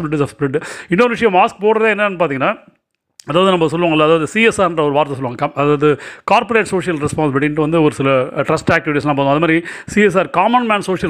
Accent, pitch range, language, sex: native, 140-185 Hz, Tamil, male